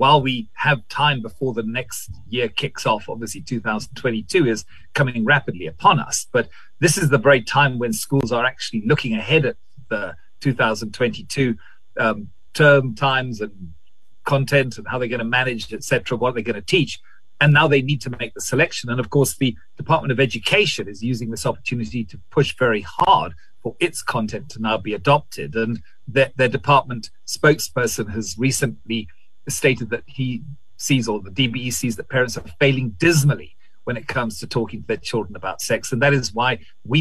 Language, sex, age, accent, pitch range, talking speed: English, male, 40-59, British, 115-140 Hz, 185 wpm